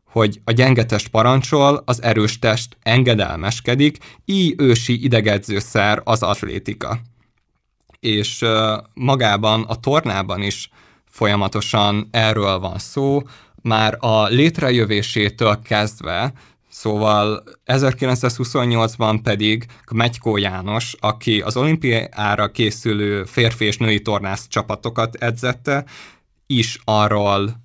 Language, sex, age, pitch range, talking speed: Hungarian, male, 20-39, 105-125 Hz, 95 wpm